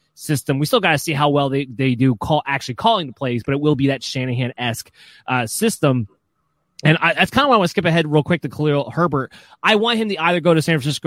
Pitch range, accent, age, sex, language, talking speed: 135-175 Hz, American, 20-39, male, English, 265 wpm